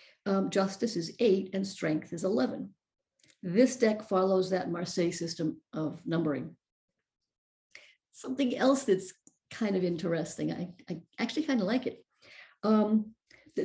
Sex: female